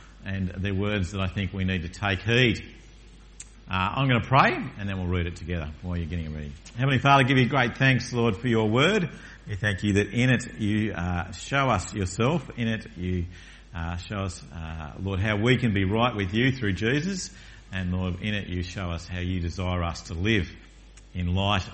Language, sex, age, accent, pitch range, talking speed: English, male, 50-69, Australian, 85-130 Hz, 220 wpm